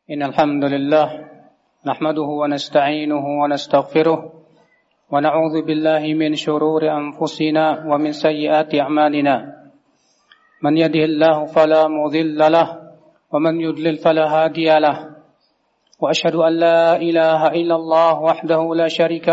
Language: Indonesian